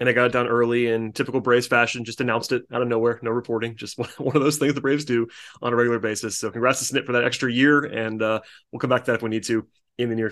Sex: male